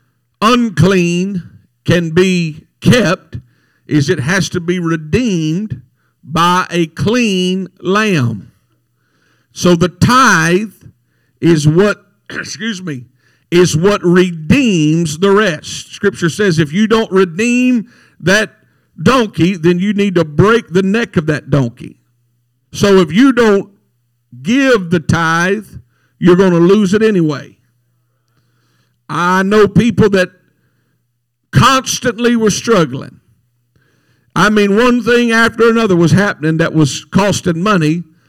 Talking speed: 120 wpm